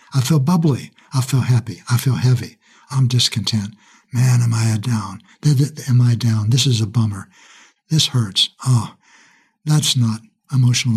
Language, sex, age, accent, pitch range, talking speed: English, male, 60-79, American, 115-135 Hz, 160 wpm